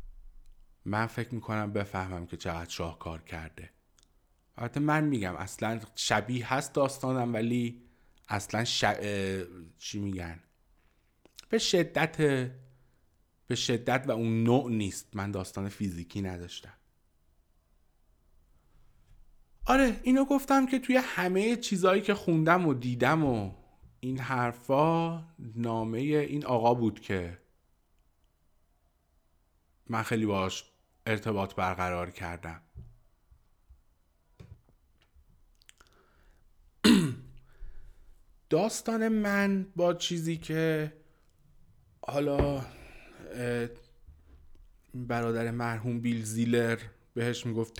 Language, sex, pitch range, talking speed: Persian, male, 85-130 Hz, 90 wpm